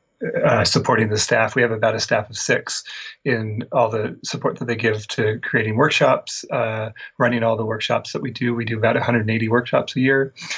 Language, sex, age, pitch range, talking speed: English, male, 30-49, 115-130 Hz, 205 wpm